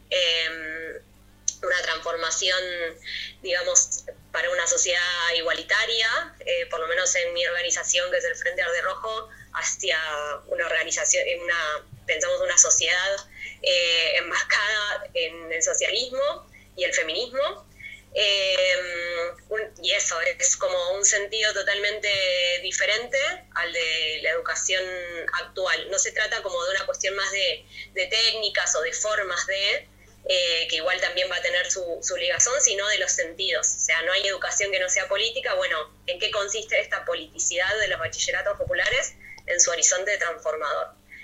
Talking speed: 150 wpm